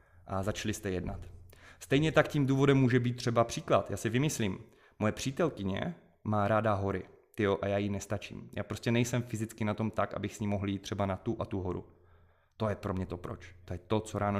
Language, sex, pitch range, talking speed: Czech, male, 95-115 Hz, 225 wpm